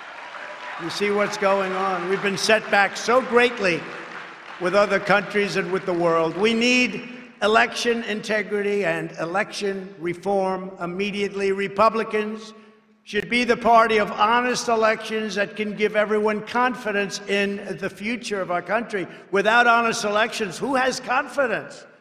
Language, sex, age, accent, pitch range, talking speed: English, male, 60-79, American, 200-255 Hz, 140 wpm